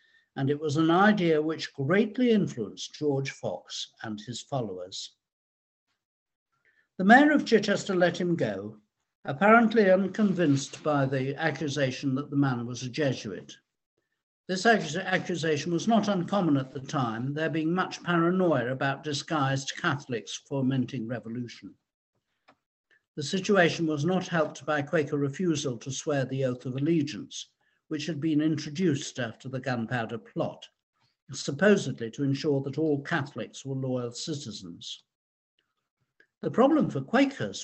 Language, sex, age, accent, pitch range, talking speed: English, male, 60-79, British, 135-185 Hz, 130 wpm